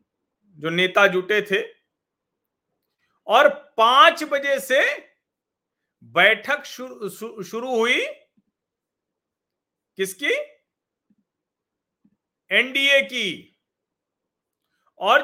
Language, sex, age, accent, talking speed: Hindi, male, 40-59, native, 65 wpm